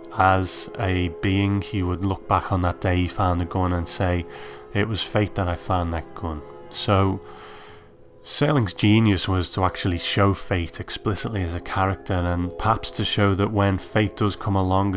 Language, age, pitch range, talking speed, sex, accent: English, 30-49, 90-105 Hz, 185 wpm, male, British